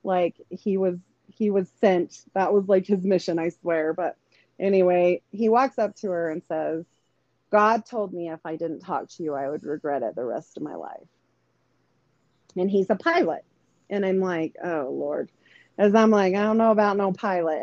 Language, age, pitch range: English, 30-49, 170-210 Hz